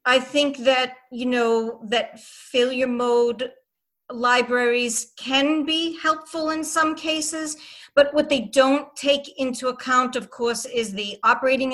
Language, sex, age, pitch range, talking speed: English, female, 40-59, 240-285 Hz, 140 wpm